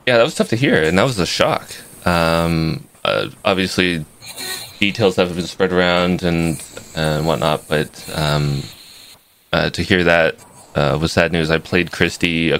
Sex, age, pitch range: male, 20-39, 80-95 Hz